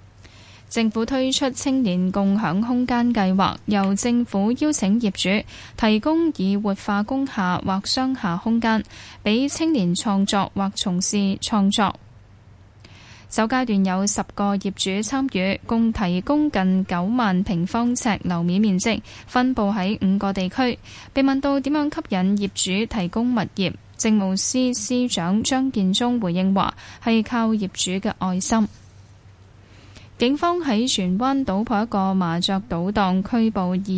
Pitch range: 185-230 Hz